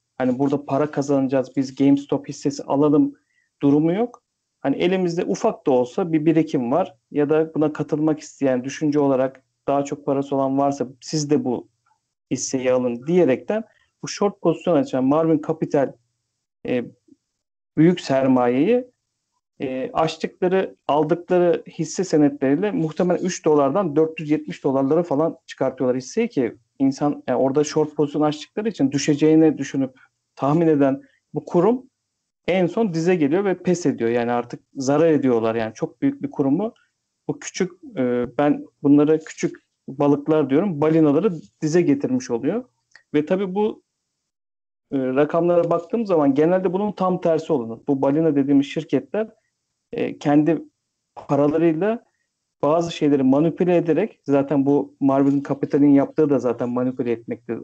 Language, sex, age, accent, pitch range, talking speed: Turkish, male, 50-69, native, 135-170 Hz, 135 wpm